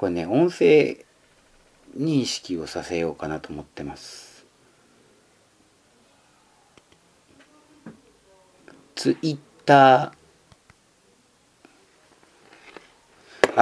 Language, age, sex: Japanese, 40-59, male